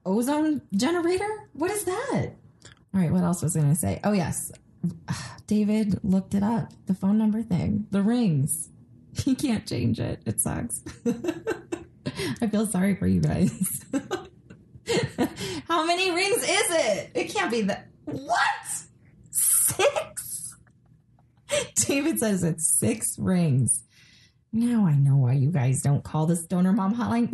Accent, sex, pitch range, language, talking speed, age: American, female, 155-235 Hz, English, 145 wpm, 20-39